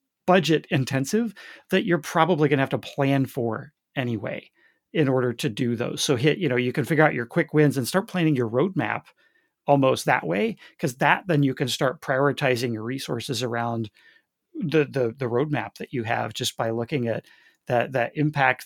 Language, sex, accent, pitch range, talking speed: English, male, American, 125-150 Hz, 195 wpm